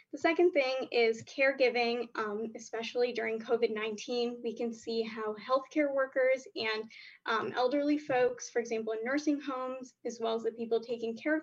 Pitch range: 225-295 Hz